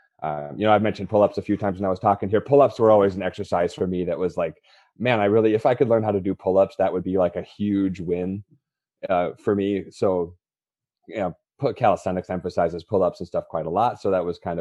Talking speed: 250 wpm